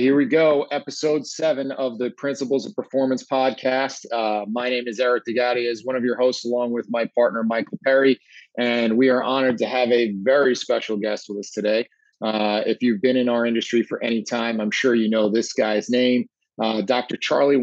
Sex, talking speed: male, 210 wpm